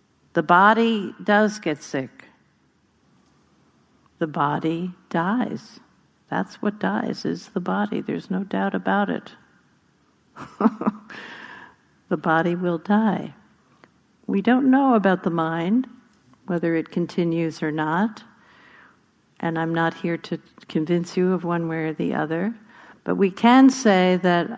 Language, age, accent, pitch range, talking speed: English, 60-79, American, 165-200 Hz, 125 wpm